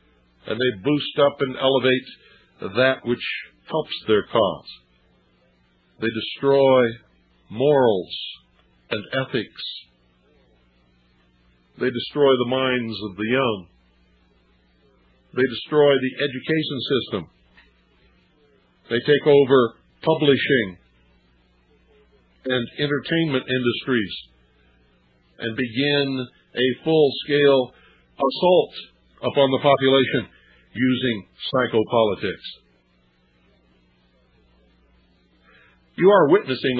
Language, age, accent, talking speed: English, 60-79, American, 80 wpm